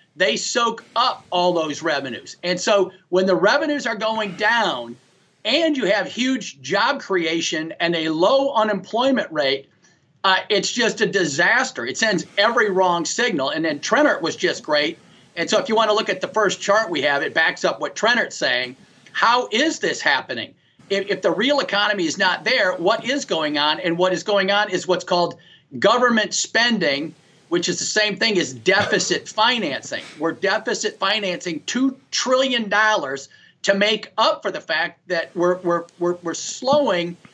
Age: 40-59